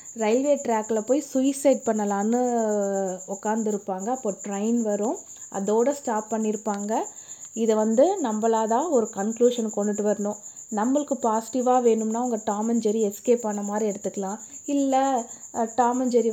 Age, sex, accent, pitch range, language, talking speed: 20-39, female, native, 210-255 Hz, Tamil, 115 wpm